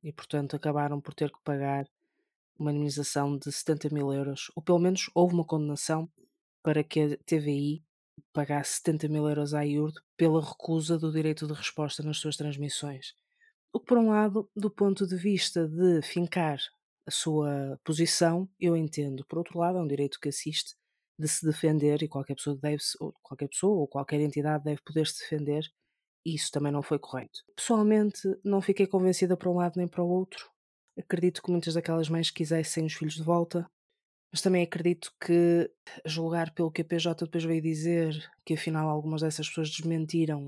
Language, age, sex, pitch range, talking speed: Portuguese, 20-39, female, 150-180 Hz, 180 wpm